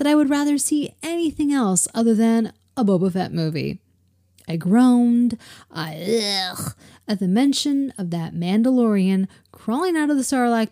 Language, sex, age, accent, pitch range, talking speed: English, female, 30-49, American, 150-245 Hz, 155 wpm